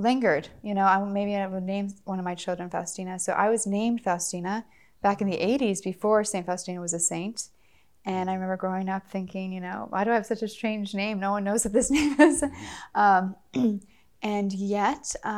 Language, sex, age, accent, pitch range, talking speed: English, female, 20-39, American, 195-220 Hz, 205 wpm